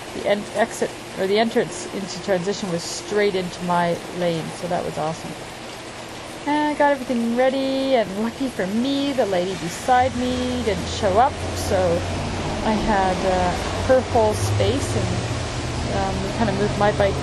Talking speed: 165 wpm